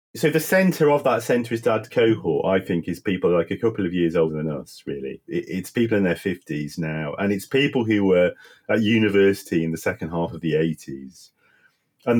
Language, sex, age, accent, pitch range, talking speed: English, male, 40-59, British, 80-105 Hz, 210 wpm